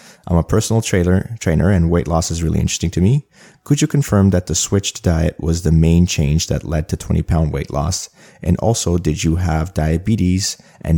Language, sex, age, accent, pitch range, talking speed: English, male, 30-49, Canadian, 80-95 Hz, 200 wpm